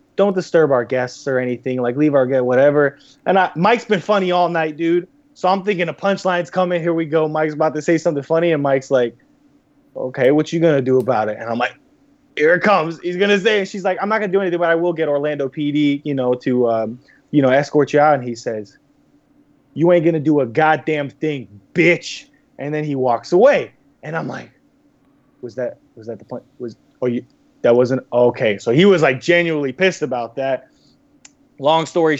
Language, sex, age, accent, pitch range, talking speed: English, male, 20-39, American, 125-165 Hz, 220 wpm